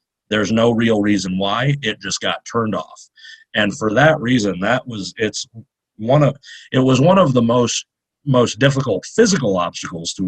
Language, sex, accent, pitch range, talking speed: English, male, American, 105-145 Hz, 175 wpm